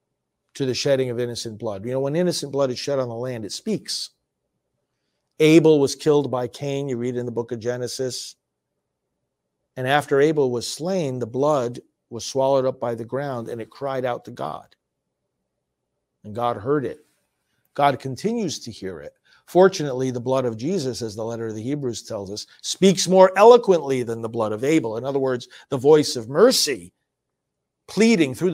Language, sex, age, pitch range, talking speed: English, male, 50-69, 120-155 Hz, 185 wpm